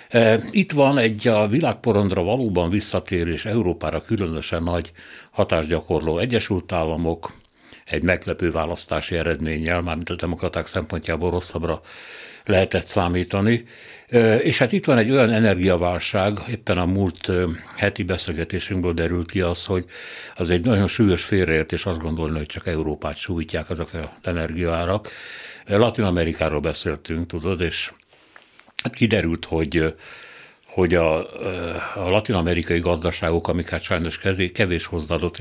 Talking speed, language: 125 wpm, Hungarian